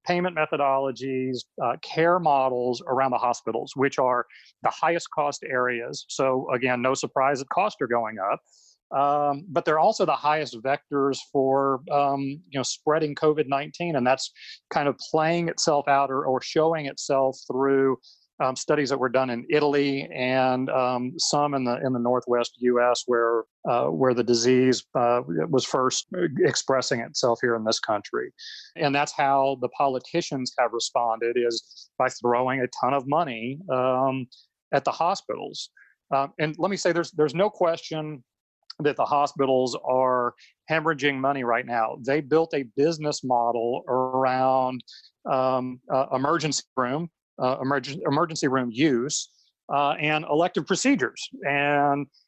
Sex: male